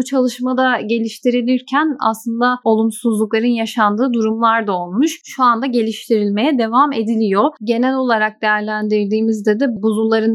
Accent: native